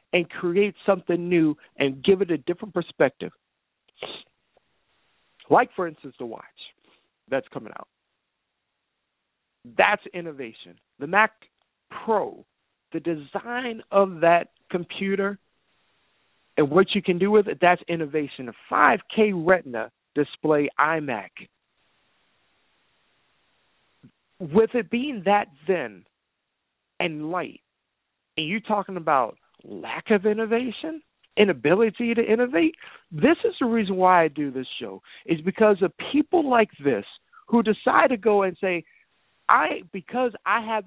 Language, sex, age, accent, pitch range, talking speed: English, male, 50-69, American, 160-220 Hz, 125 wpm